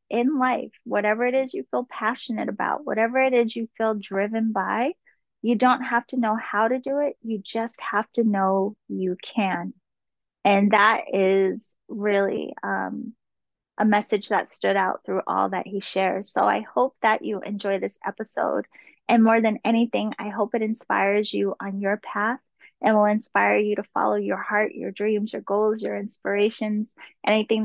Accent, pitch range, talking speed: American, 200-235 Hz, 180 wpm